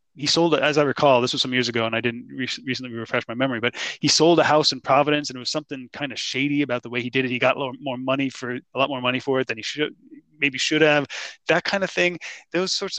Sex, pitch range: male, 125-155 Hz